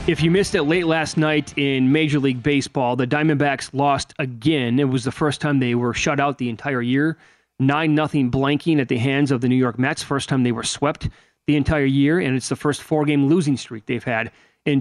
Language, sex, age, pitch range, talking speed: English, male, 30-49, 130-150 Hz, 225 wpm